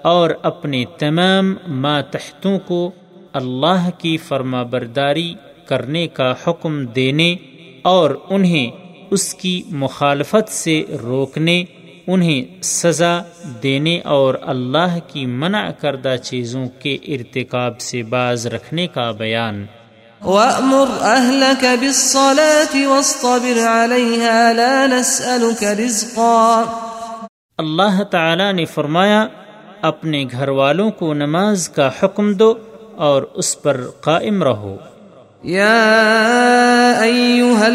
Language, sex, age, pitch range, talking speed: Urdu, male, 30-49, 145-215 Hz, 85 wpm